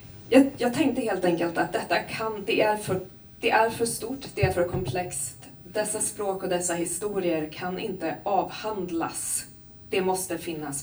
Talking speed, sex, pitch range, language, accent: 165 wpm, female, 160-210 Hz, Swedish, native